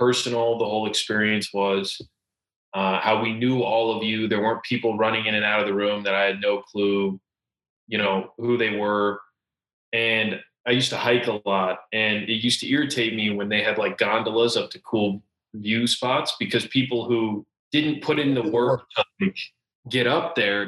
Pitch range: 105-125 Hz